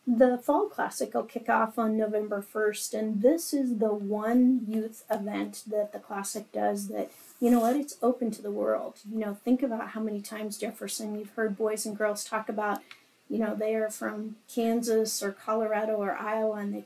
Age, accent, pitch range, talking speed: 40-59, American, 210-240 Hz, 200 wpm